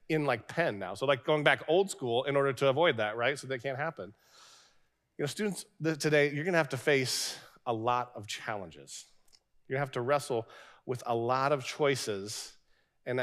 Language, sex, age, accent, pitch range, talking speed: English, male, 40-59, American, 120-160 Hz, 200 wpm